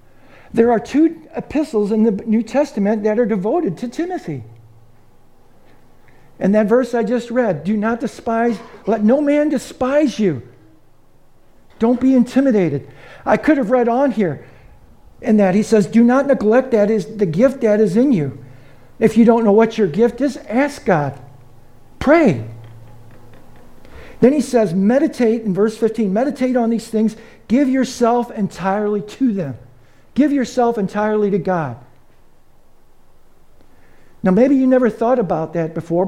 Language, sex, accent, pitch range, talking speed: English, male, American, 155-235 Hz, 150 wpm